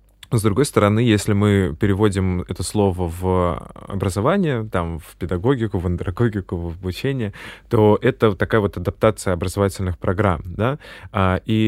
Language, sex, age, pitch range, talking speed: Russian, male, 20-39, 90-110 Hz, 135 wpm